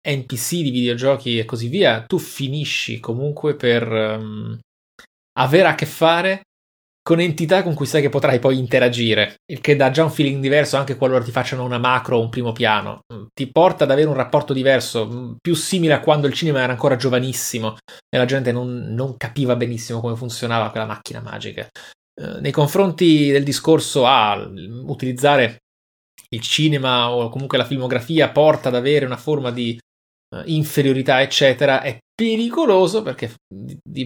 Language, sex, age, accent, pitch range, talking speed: Italian, male, 20-39, native, 120-150 Hz, 165 wpm